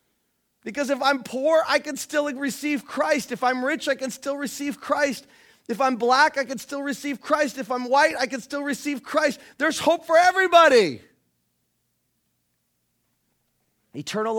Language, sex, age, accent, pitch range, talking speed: English, male, 30-49, American, 155-250 Hz, 160 wpm